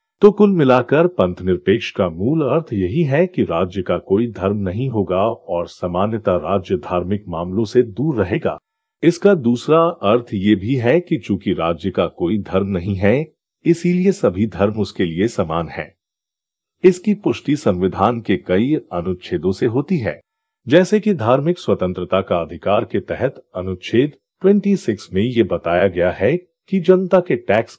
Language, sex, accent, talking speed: Hindi, male, native, 160 wpm